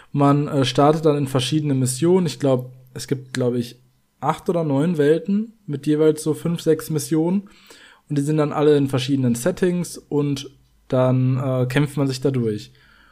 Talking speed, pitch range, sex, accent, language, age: 170 wpm, 125-155 Hz, male, German, German, 20-39